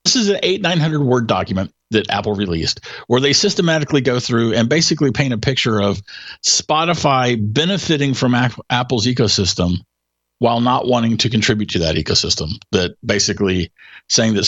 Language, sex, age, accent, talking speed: English, male, 50-69, American, 160 wpm